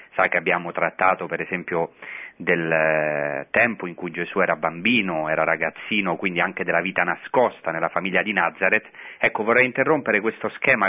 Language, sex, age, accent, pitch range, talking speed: Italian, male, 30-49, native, 95-120 Hz, 165 wpm